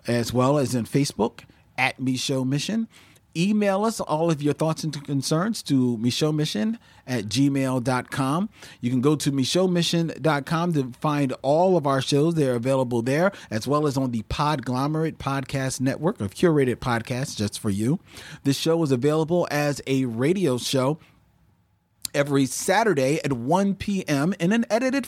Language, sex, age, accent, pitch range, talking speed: English, male, 40-59, American, 120-160 Hz, 155 wpm